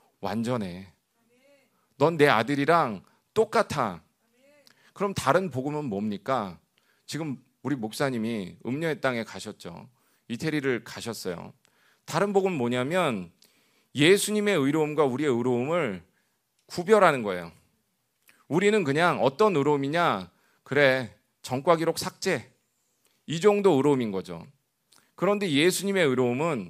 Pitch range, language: 120-195 Hz, Korean